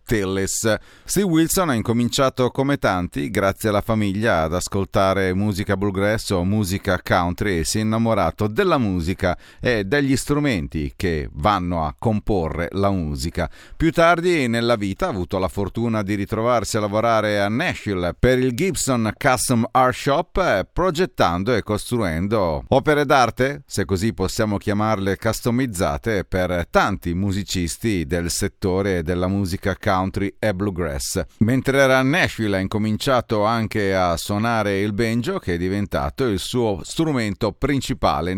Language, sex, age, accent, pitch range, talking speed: Italian, male, 40-59, native, 95-125 Hz, 135 wpm